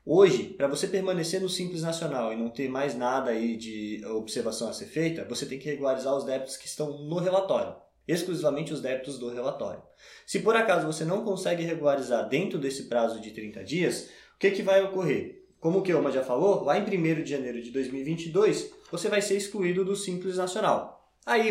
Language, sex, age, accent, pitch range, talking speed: Portuguese, male, 20-39, Brazilian, 140-185 Hz, 200 wpm